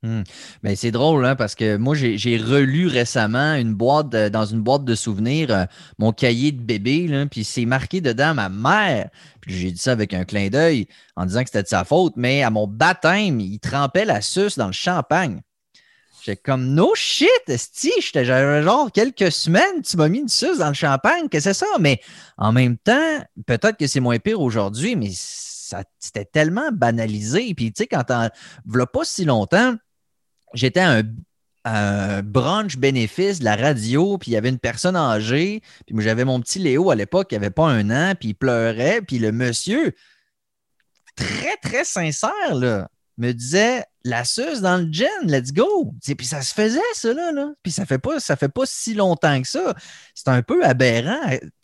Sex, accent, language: male, Canadian, French